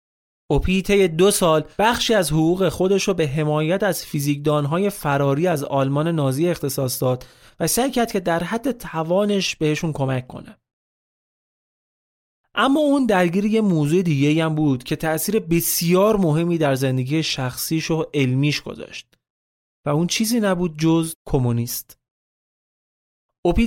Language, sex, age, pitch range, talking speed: Persian, male, 30-49, 140-185 Hz, 135 wpm